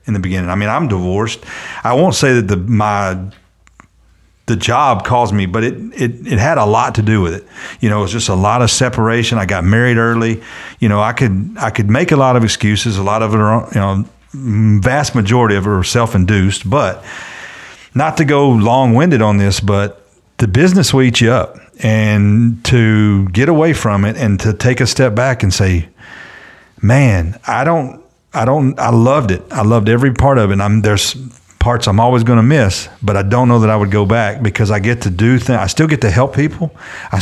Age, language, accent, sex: 40-59, English, American, male